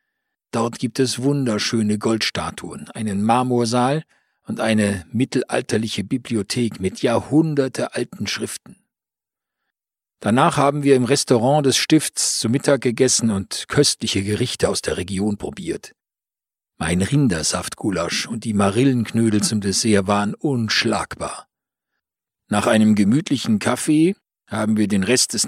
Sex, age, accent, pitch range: male, 50-69, German, 105-130 Hz